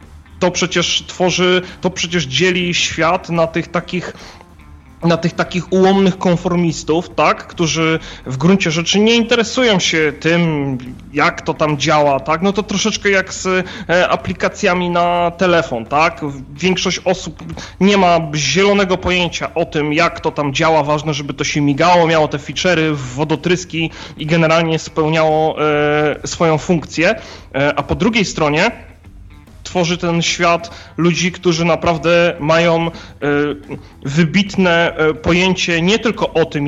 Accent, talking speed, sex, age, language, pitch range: native, 135 wpm, male, 30-49, Polish, 150-180 Hz